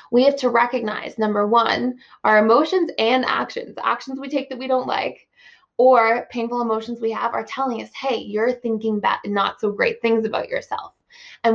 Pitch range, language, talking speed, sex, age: 220-255 Hz, English, 180 wpm, female, 20-39